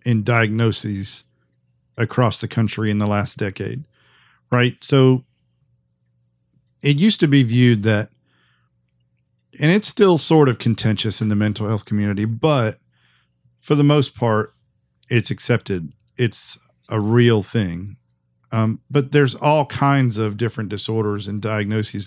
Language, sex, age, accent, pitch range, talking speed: English, male, 40-59, American, 105-125 Hz, 135 wpm